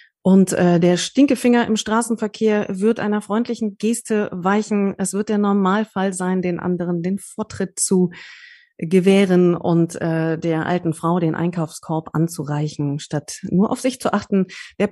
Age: 30-49